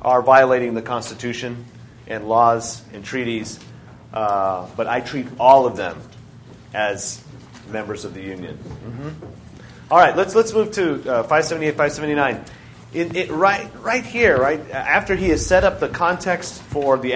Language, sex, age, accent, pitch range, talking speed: English, male, 40-59, American, 120-175 Hz, 170 wpm